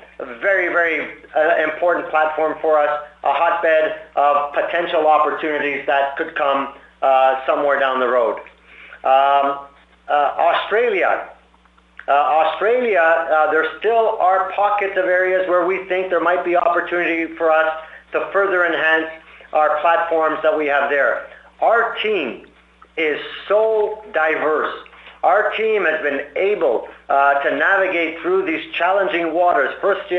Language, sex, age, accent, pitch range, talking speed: English, male, 50-69, American, 155-190 Hz, 135 wpm